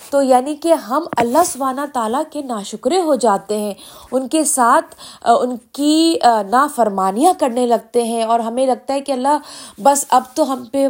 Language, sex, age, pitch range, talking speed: Urdu, female, 20-39, 220-285 Hz, 180 wpm